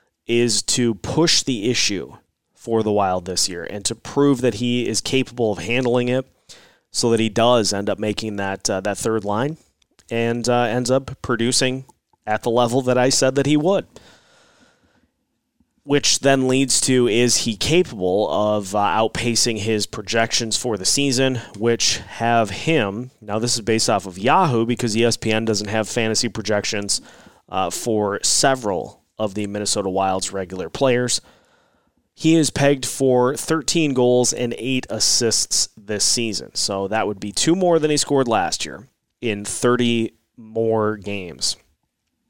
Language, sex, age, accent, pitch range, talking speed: English, male, 30-49, American, 105-130 Hz, 160 wpm